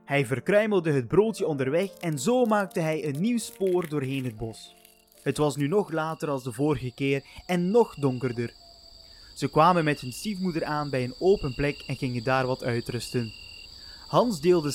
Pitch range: 130-200 Hz